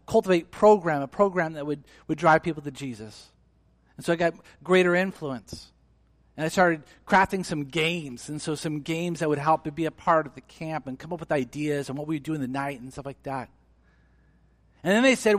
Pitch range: 130-185 Hz